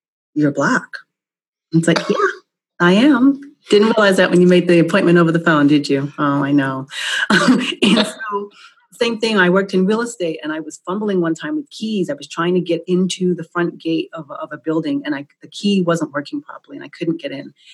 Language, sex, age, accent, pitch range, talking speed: English, female, 30-49, American, 165-270 Hz, 225 wpm